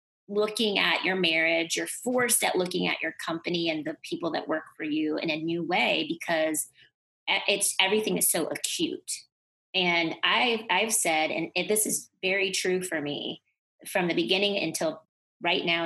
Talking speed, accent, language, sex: 170 wpm, American, English, female